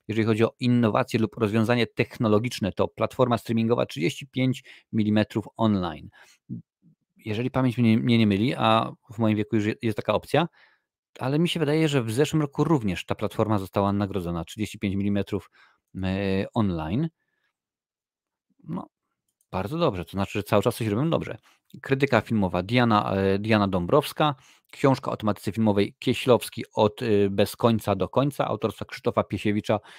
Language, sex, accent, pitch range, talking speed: Polish, male, native, 100-120 Hz, 140 wpm